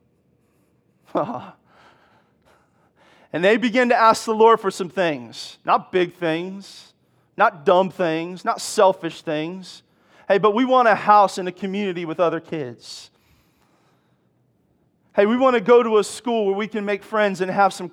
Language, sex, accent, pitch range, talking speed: English, male, American, 185-220 Hz, 155 wpm